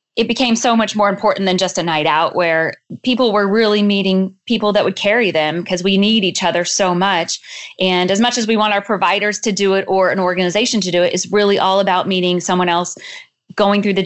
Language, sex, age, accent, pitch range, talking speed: English, female, 20-39, American, 185-215 Hz, 235 wpm